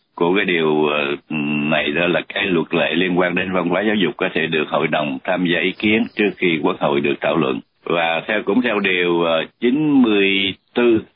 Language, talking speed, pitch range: Vietnamese, 205 wpm, 85-95 Hz